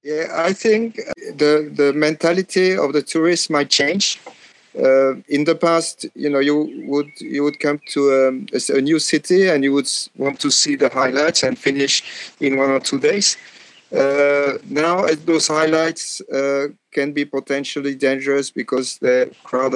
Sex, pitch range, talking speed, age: male, 140-170 Hz, 170 wpm, 50-69